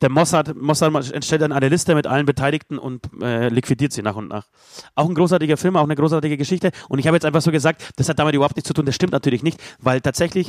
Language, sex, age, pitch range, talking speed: German, male, 30-49, 135-170 Hz, 255 wpm